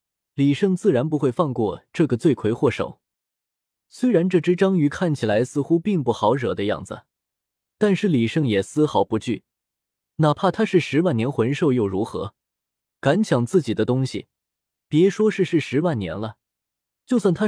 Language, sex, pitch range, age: Chinese, male, 115-170 Hz, 20-39